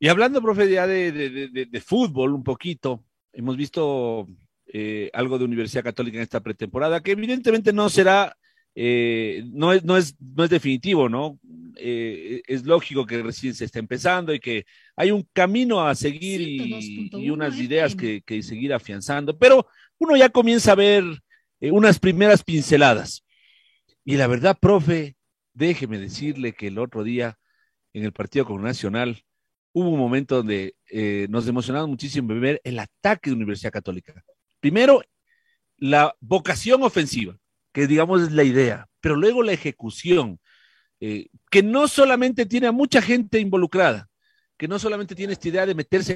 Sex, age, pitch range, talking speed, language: male, 40-59, 120-195 Hz, 165 wpm, Spanish